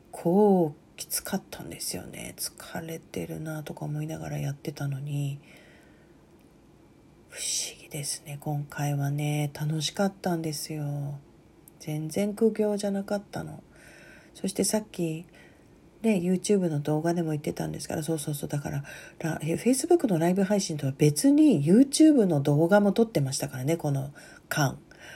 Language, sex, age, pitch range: Japanese, female, 40-59, 155-210 Hz